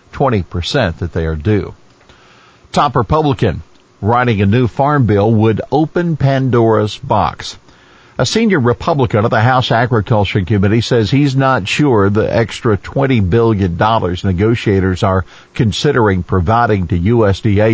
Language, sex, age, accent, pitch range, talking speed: English, male, 50-69, American, 95-120 Hz, 125 wpm